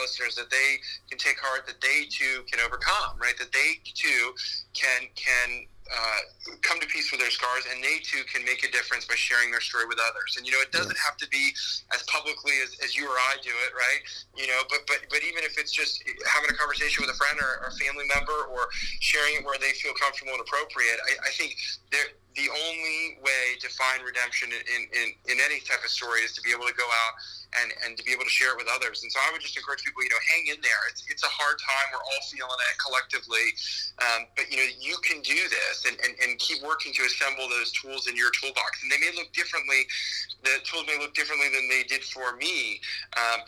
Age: 30-49